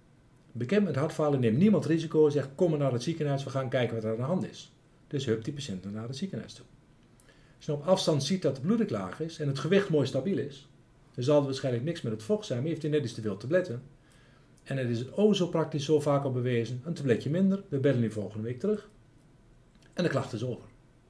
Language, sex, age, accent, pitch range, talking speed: Dutch, male, 50-69, Dutch, 115-150 Hz, 255 wpm